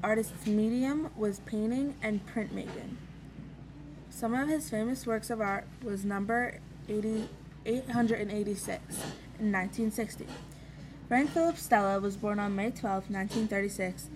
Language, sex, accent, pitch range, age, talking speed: English, female, American, 170-220 Hz, 20-39, 115 wpm